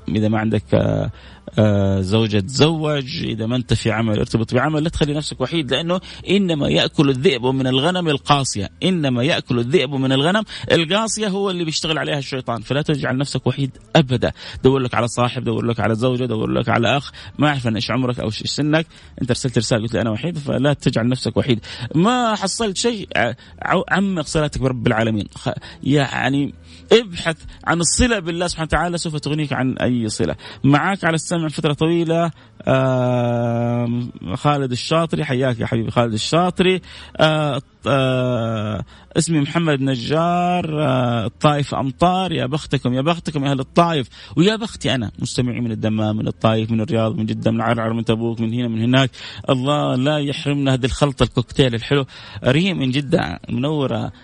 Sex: male